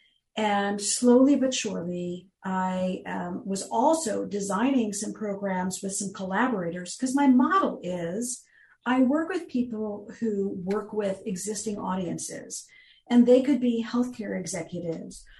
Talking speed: 130 wpm